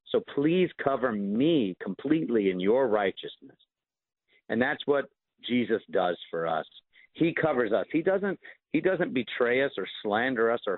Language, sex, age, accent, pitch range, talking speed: English, male, 50-69, American, 115-145 Hz, 155 wpm